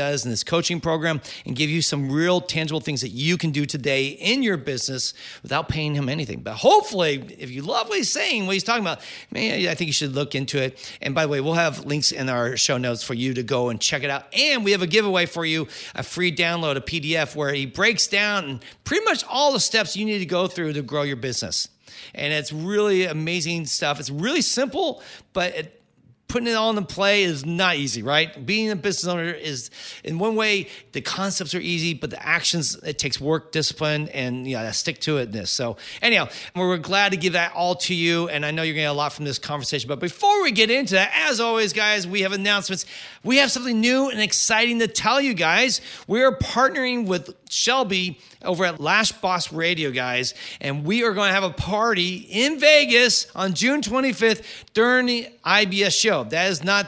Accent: American